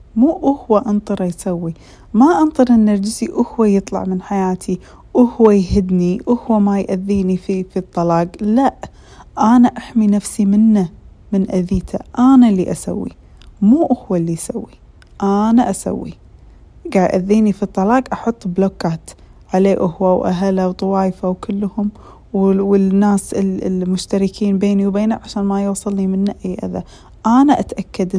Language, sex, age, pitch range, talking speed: Arabic, female, 20-39, 185-220 Hz, 125 wpm